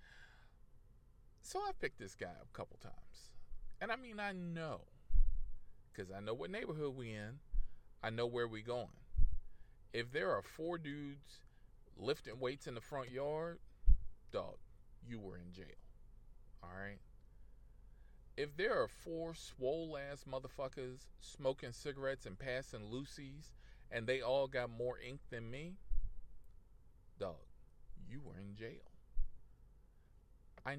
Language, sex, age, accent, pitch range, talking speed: English, male, 40-59, American, 105-165 Hz, 135 wpm